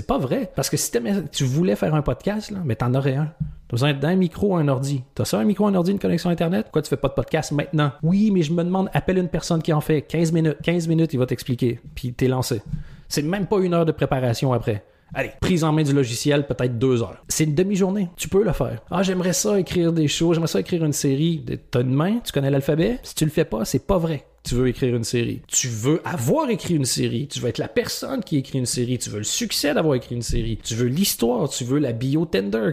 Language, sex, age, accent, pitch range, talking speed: French, male, 30-49, Canadian, 130-175 Hz, 265 wpm